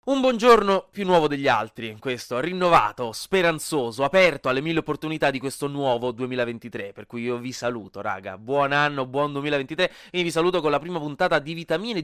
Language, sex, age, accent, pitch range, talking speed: Italian, male, 20-39, native, 125-170 Hz, 185 wpm